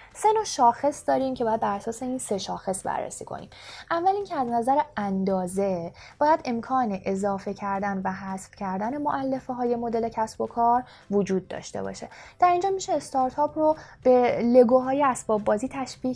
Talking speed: 160 wpm